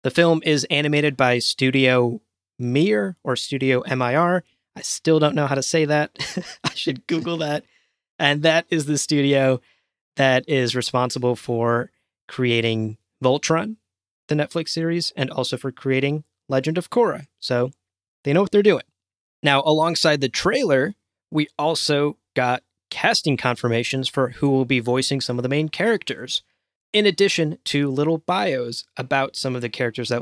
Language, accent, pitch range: English, American, 120-150 Hz